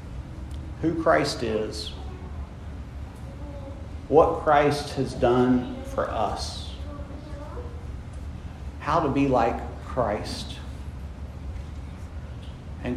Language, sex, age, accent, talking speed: English, male, 40-59, American, 65 wpm